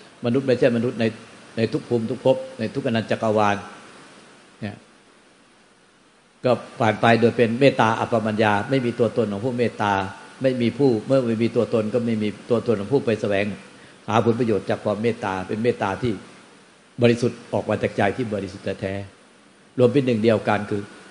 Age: 60-79